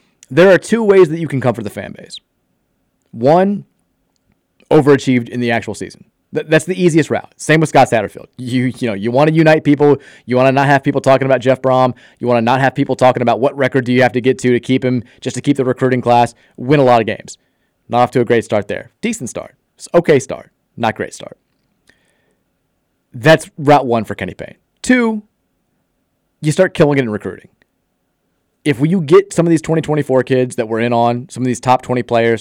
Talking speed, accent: 220 wpm, American